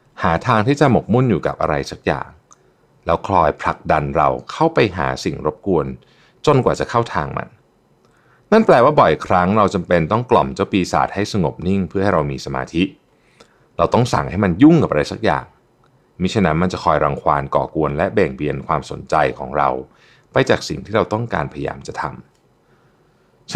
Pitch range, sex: 80-115 Hz, male